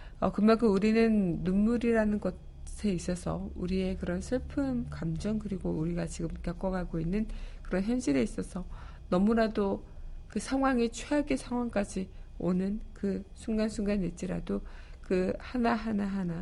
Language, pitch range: Korean, 175-210 Hz